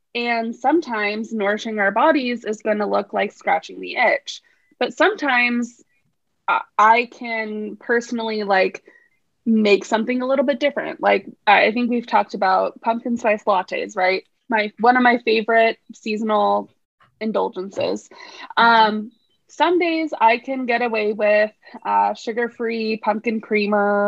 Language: English